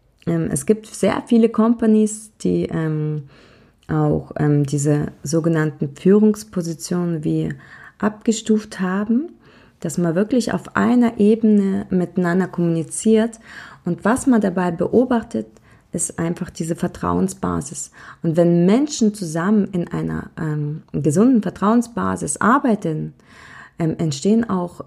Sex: female